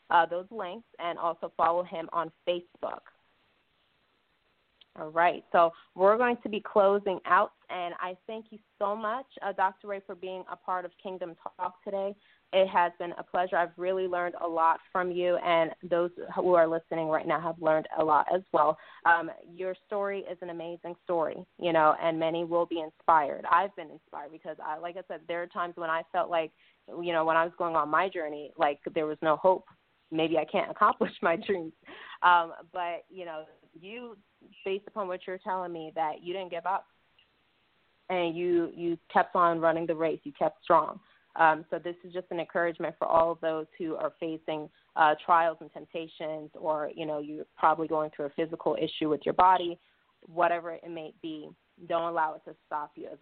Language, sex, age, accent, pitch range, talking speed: English, female, 20-39, American, 160-185 Hz, 200 wpm